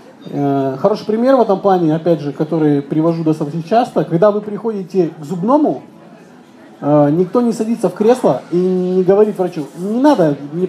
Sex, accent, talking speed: male, native, 155 wpm